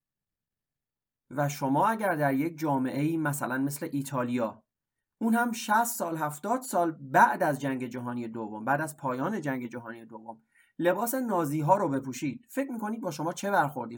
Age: 30-49